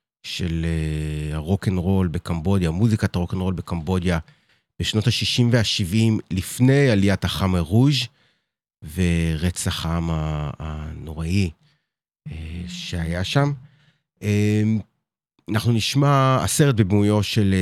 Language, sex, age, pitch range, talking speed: Hebrew, male, 30-49, 85-115 Hz, 90 wpm